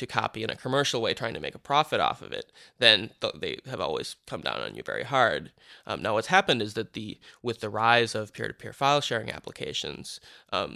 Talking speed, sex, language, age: 225 wpm, male, English, 20-39